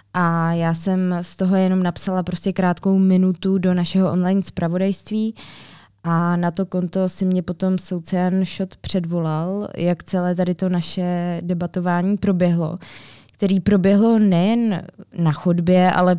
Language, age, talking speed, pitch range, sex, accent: Czech, 20-39, 135 wpm, 175-195 Hz, female, native